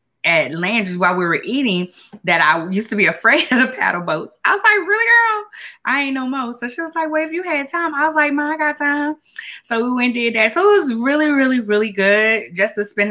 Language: English